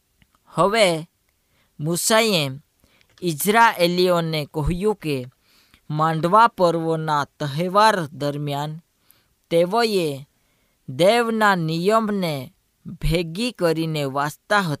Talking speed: 55 wpm